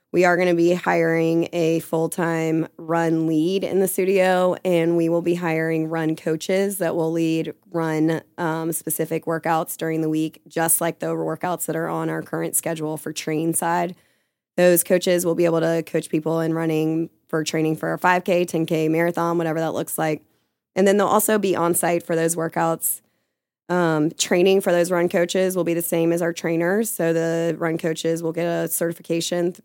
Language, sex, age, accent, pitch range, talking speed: English, female, 20-39, American, 160-170 Hz, 195 wpm